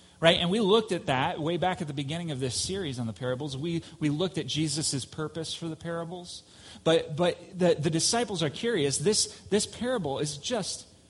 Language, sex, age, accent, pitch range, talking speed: English, male, 30-49, American, 115-160 Hz, 205 wpm